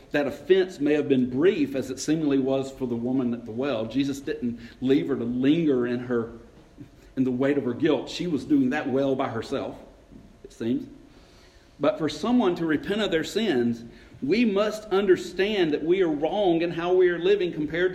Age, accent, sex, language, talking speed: 50-69, American, male, English, 200 wpm